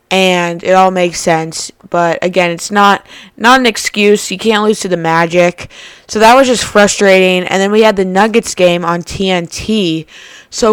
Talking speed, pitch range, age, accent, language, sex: 185 wpm, 175-210 Hz, 20-39, American, English, female